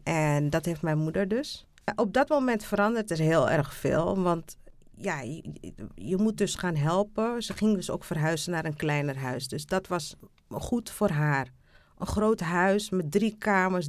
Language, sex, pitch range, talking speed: Dutch, female, 170-215 Hz, 185 wpm